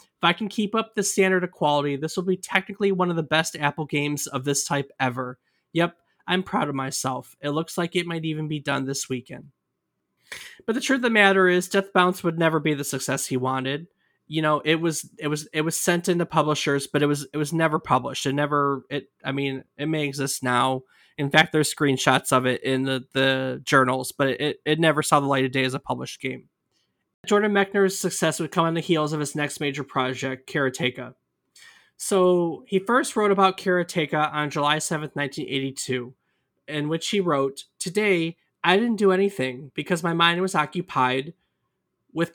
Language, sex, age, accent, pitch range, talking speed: English, male, 20-39, American, 140-175 Hz, 200 wpm